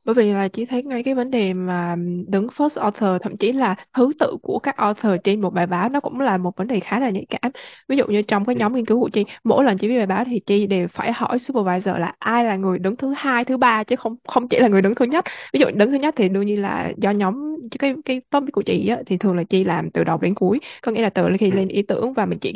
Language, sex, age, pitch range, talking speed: Vietnamese, female, 20-39, 195-245 Hz, 300 wpm